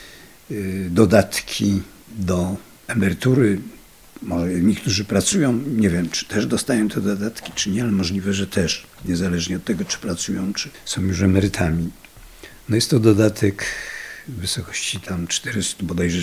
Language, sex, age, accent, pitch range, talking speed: Polish, male, 50-69, native, 90-105 Hz, 135 wpm